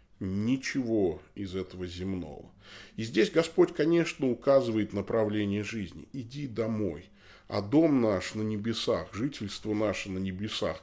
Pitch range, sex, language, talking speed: 90-110 Hz, male, Russian, 120 wpm